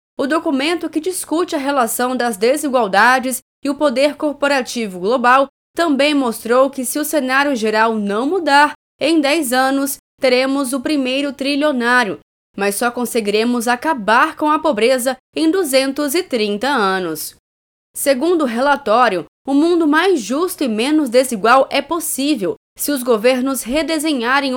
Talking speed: 135 wpm